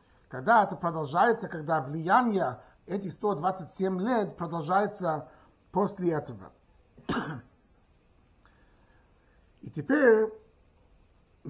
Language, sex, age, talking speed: Russian, male, 50-69, 70 wpm